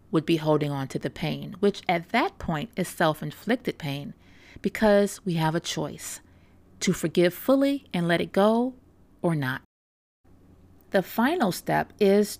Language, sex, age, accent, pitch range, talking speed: English, female, 30-49, American, 150-210 Hz, 155 wpm